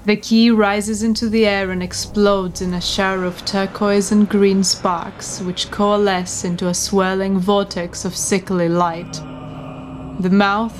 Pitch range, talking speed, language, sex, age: 180-200 Hz, 150 wpm, English, female, 20-39